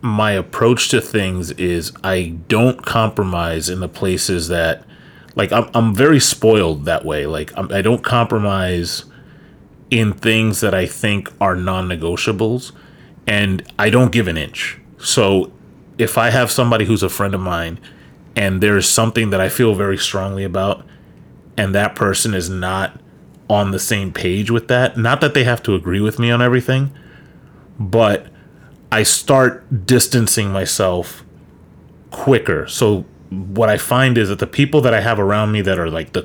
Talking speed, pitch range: 165 wpm, 95-115 Hz